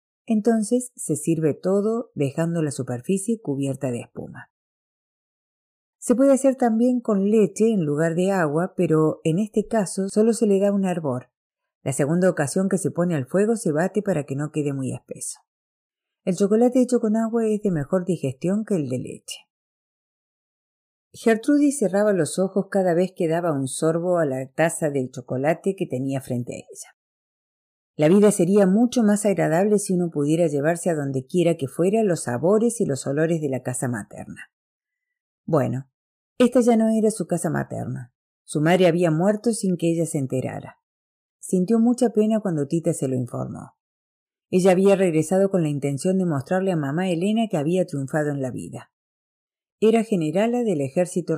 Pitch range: 145-215 Hz